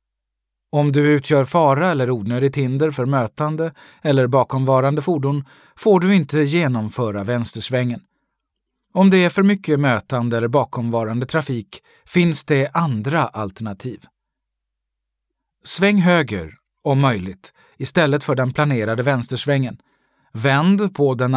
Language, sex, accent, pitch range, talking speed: Swedish, male, native, 115-155 Hz, 120 wpm